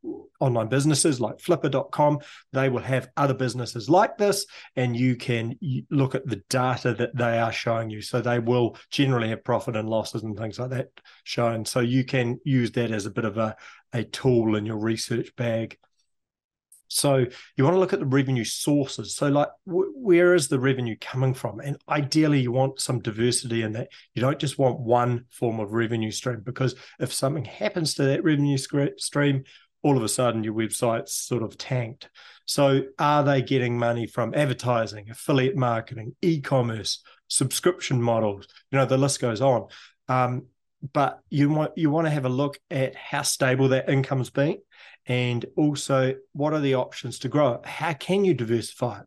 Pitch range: 120-145 Hz